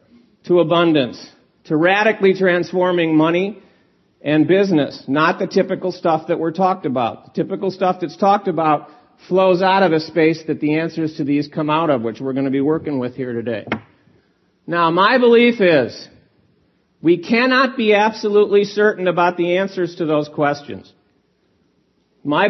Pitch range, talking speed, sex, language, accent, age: 155-200 Hz, 160 wpm, male, English, American, 50-69